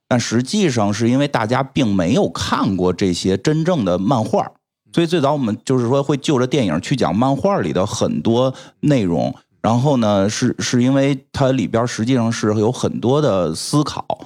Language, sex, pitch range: Chinese, male, 100-135 Hz